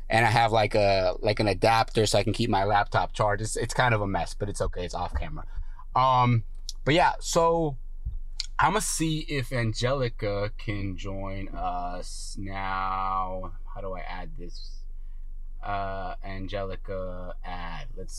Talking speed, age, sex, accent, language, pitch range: 160 wpm, 20-39, male, American, English, 75-125 Hz